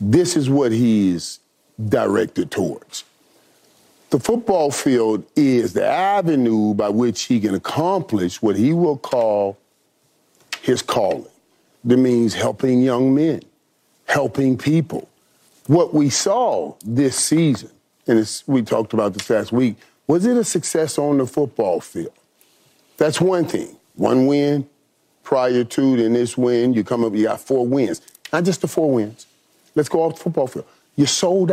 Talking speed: 155 wpm